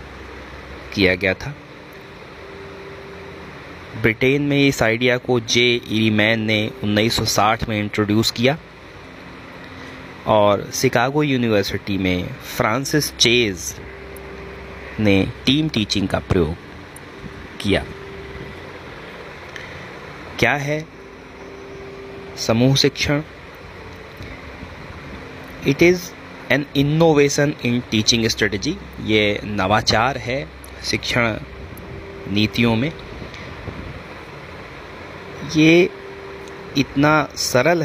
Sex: male